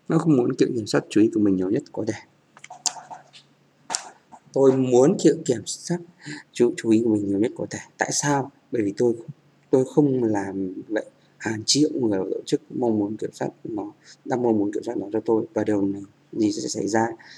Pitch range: 110-140 Hz